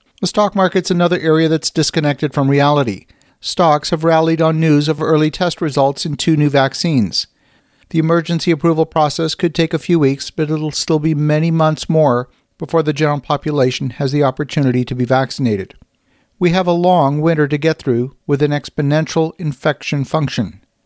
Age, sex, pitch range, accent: 50-69, male, 140-160 Hz, American